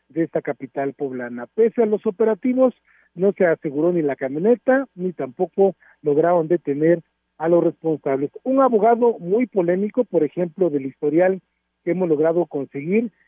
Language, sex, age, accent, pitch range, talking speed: Spanish, male, 50-69, Mexican, 165-215 Hz, 150 wpm